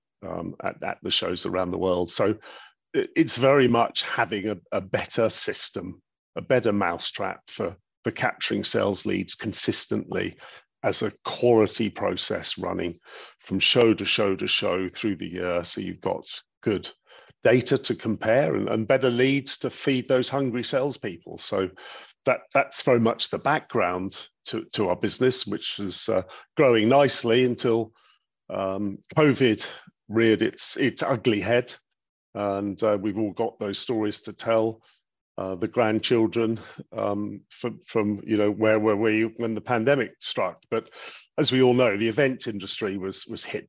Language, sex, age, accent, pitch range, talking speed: English, male, 40-59, British, 100-125 Hz, 155 wpm